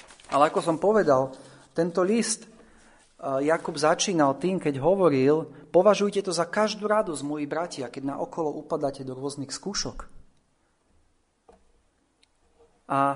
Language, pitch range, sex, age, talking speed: Slovak, 140-195 Hz, male, 40-59, 120 wpm